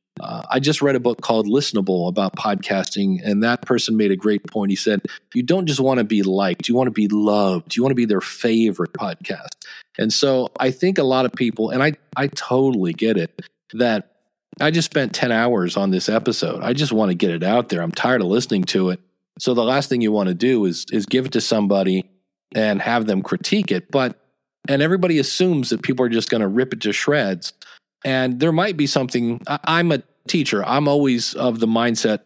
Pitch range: 105-135 Hz